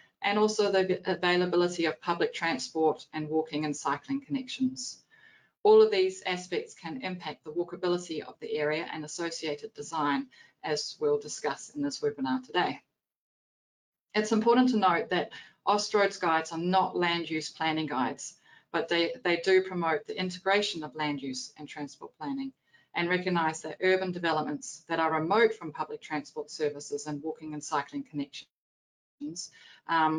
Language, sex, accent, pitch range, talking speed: English, female, Australian, 155-235 Hz, 155 wpm